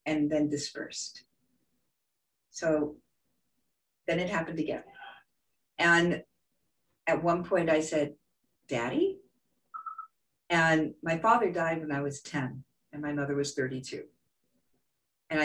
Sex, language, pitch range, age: female, English, 150-185 Hz, 50-69